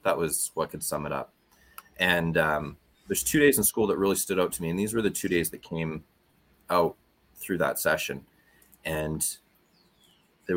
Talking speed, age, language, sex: 195 wpm, 30-49, English, male